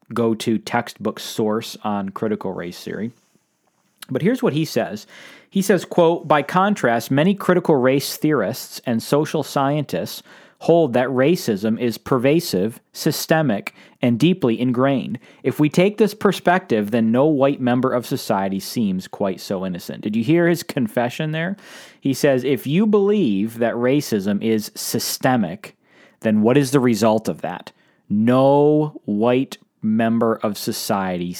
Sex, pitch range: male, 115-170 Hz